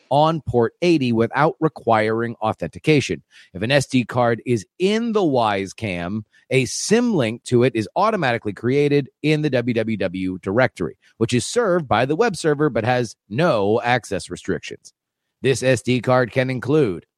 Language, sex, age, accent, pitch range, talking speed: English, male, 30-49, American, 115-180 Hz, 150 wpm